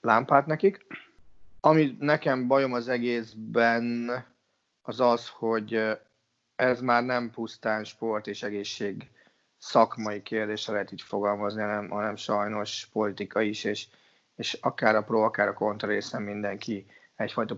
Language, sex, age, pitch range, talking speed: Hungarian, male, 30-49, 105-120 Hz, 130 wpm